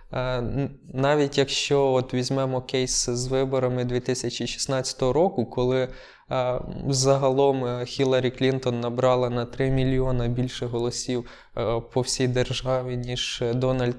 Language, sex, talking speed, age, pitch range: Ukrainian, male, 105 wpm, 20-39, 125-140 Hz